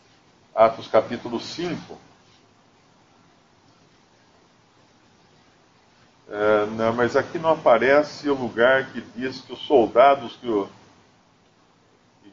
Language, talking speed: Portuguese, 95 wpm